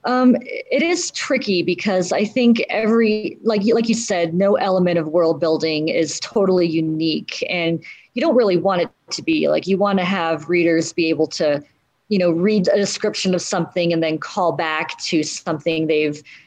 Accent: American